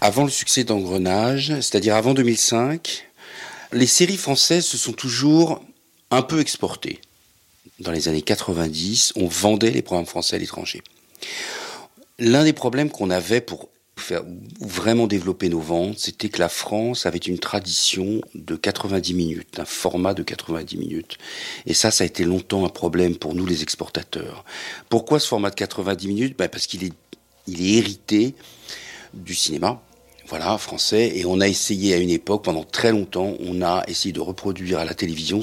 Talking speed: 170 wpm